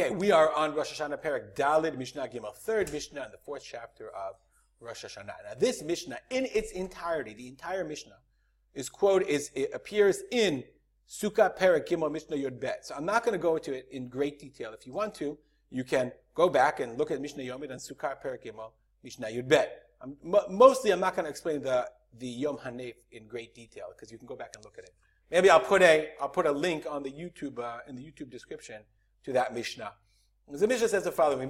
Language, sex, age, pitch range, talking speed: English, male, 40-59, 140-205 Hz, 225 wpm